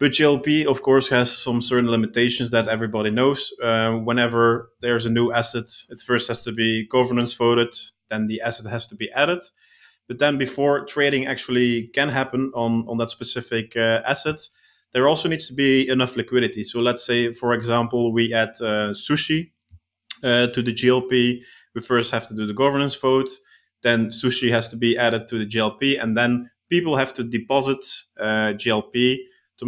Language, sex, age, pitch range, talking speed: English, male, 20-39, 115-130 Hz, 180 wpm